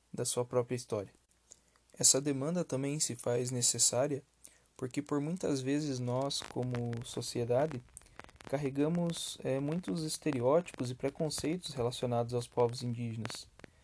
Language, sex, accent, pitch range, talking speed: Portuguese, male, Brazilian, 120-140 Hz, 115 wpm